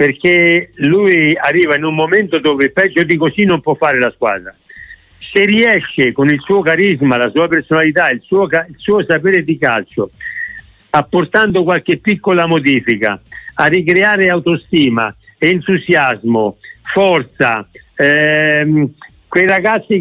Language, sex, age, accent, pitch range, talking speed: Italian, male, 50-69, native, 155-200 Hz, 125 wpm